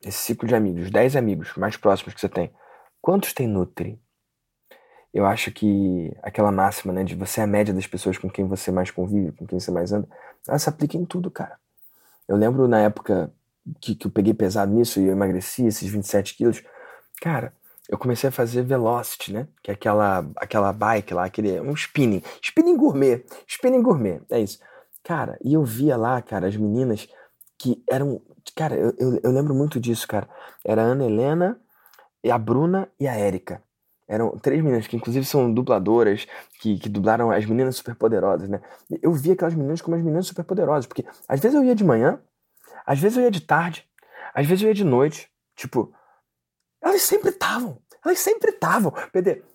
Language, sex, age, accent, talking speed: Portuguese, male, 20-39, Brazilian, 190 wpm